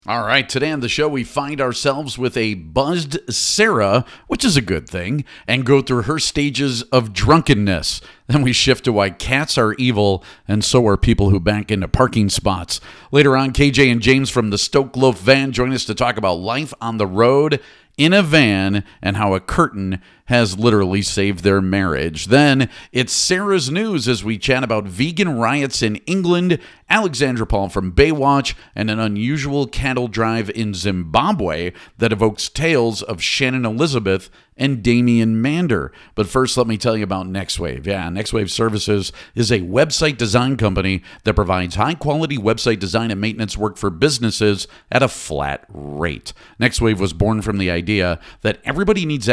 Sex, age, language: male, 40-59, English